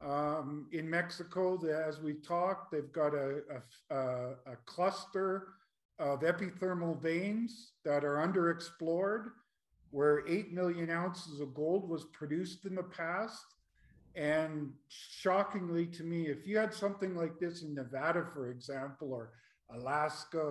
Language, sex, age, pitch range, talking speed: English, male, 50-69, 150-185 Hz, 130 wpm